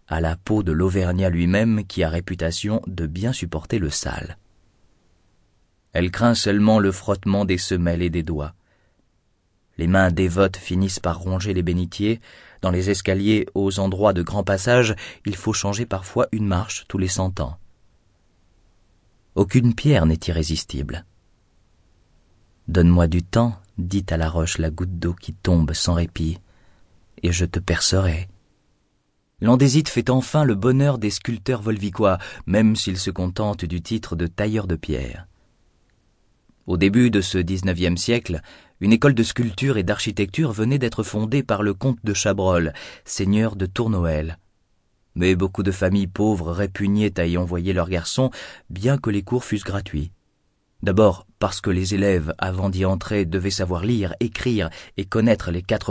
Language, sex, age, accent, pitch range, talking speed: French, male, 30-49, French, 90-110 Hz, 160 wpm